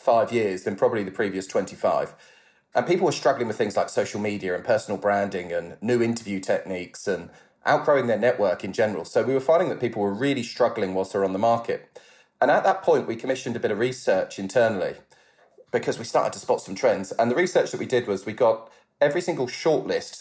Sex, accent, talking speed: male, British, 215 wpm